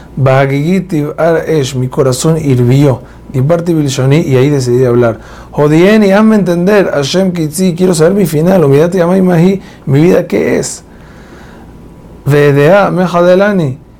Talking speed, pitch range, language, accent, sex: 130 wpm, 125-170 Hz, Spanish, Argentinian, male